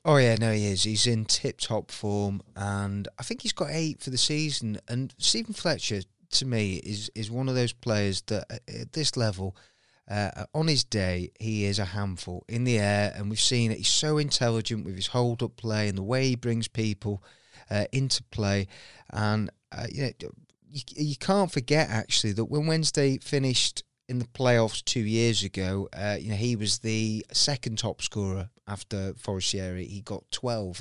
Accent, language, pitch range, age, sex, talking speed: British, English, 105-125 Hz, 30-49, male, 190 wpm